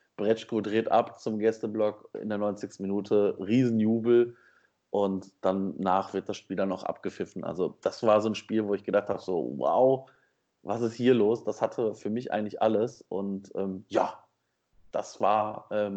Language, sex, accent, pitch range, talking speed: German, male, German, 105-120 Hz, 175 wpm